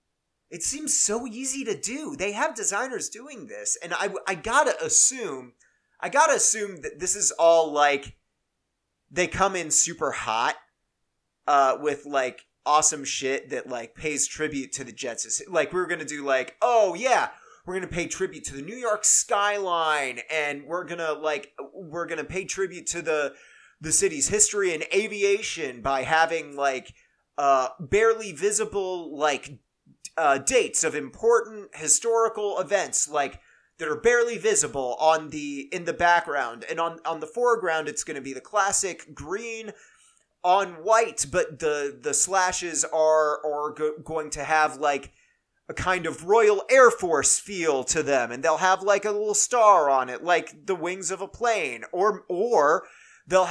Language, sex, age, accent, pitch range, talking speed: English, male, 30-49, American, 150-210 Hz, 175 wpm